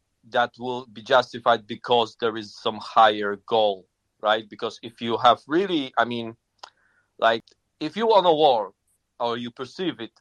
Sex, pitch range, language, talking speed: male, 110-125 Hz, English, 165 wpm